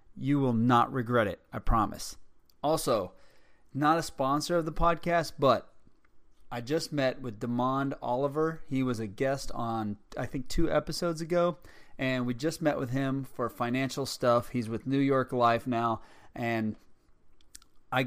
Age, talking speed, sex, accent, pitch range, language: 30-49, 160 wpm, male, American, 120-140 Hz, English